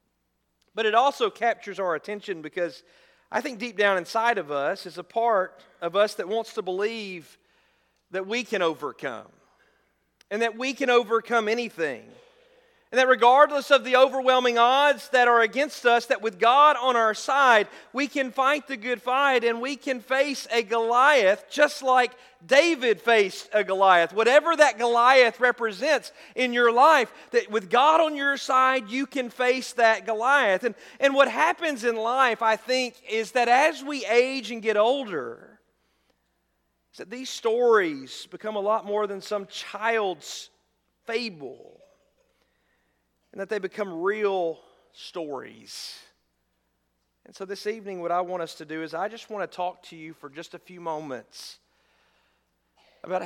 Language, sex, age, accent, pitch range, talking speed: English, male, 40-59, American, 175-255 Hz, 160 wpm